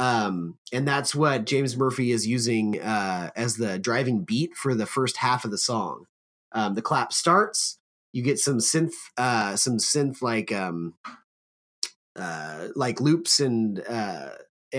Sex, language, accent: male, English, American